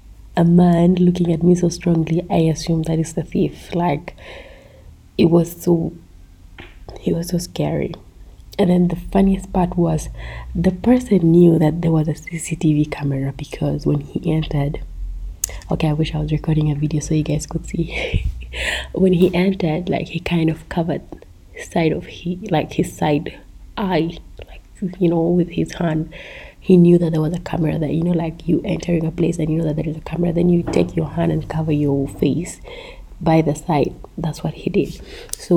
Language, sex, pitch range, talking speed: English, female, 150-175 Hz, 190 wpm